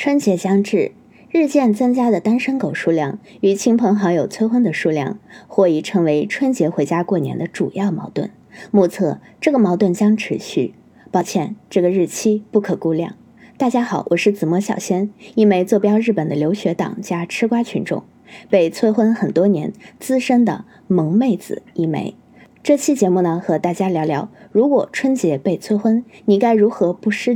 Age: 20-39